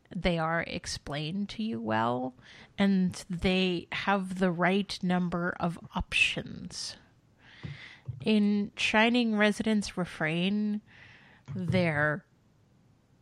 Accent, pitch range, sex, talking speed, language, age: American, 165-205 Hz, female, 85 wpm, English, 30-49